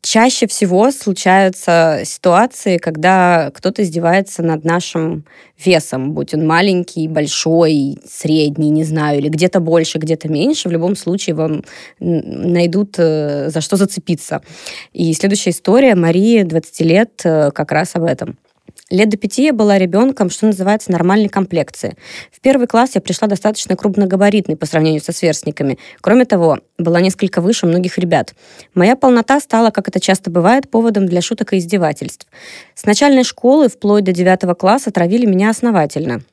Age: 20-39